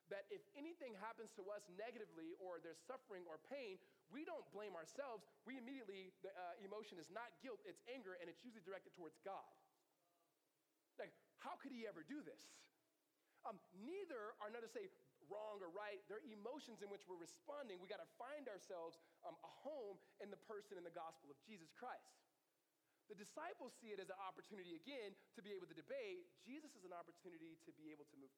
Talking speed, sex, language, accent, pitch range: 195 wpm, male, English, American, 170-280 Hz